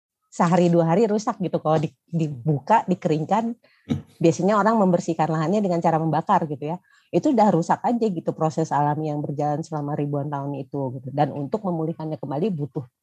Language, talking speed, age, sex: Indonesian, 165 wpm, 30-49, female